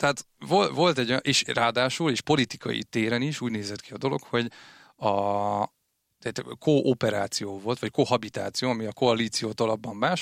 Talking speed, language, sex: 155 wpm, Hungarian, male